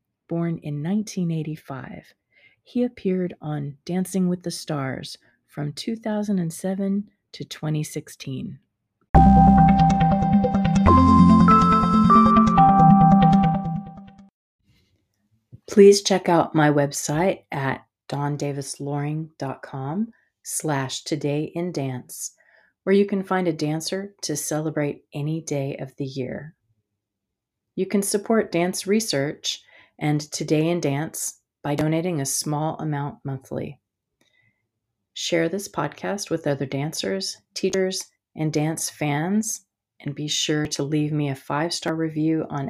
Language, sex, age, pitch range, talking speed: English, female, 40-59, 145-195 Hz, 105 wpm